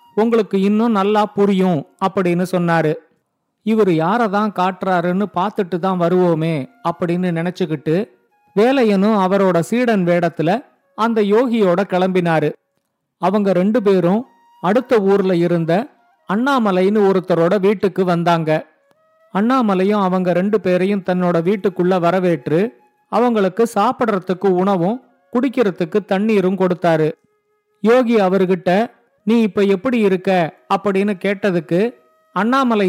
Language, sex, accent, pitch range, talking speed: Tamil, male, native, 180-220 Hz, 95 wpm